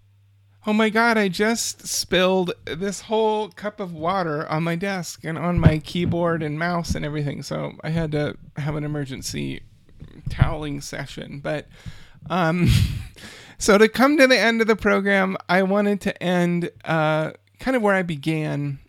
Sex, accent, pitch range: male, American, 135-165 Hz